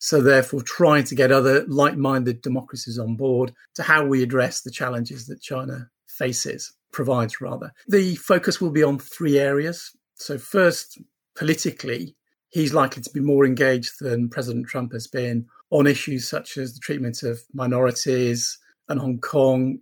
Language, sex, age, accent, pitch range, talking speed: English, male, 40-59, British, 130-150 Hz, 160 wpm